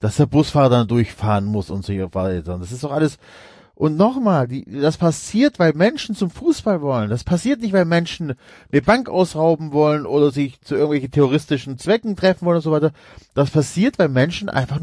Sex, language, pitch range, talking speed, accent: male, German, 130-180 Hz, 195 wpm, German